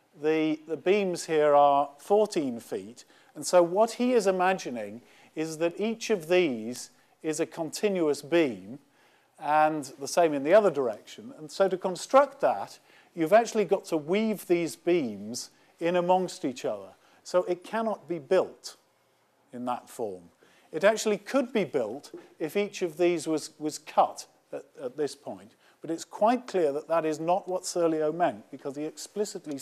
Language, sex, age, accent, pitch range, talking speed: English, male, 50-69, British, 140-185 Hz, 170 wpm